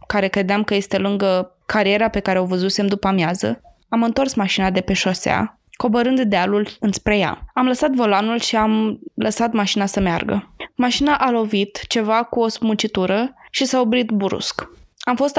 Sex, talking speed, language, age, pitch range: female, 170 wpm, Romanian, 20-39, 200-240 Hz